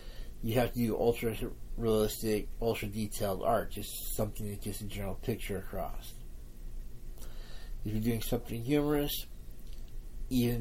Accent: American